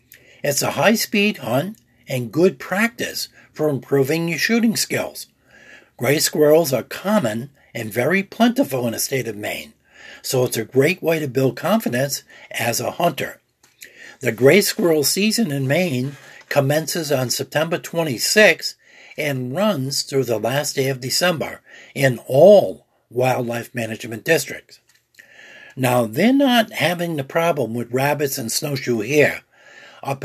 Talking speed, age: 140 wpm, 60-79